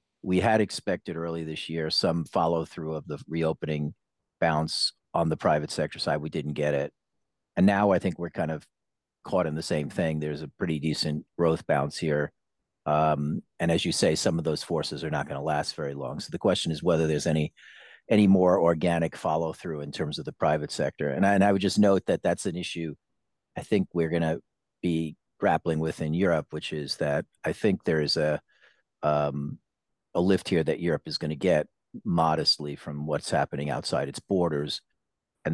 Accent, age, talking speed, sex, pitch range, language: American, 40-59, 205 wpm, male, 75-85 Hz, English